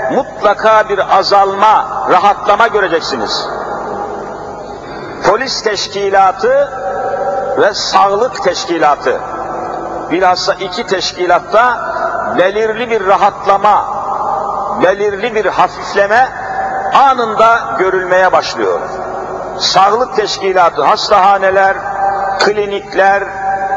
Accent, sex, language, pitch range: native, male, Turkish, 195-225 Hz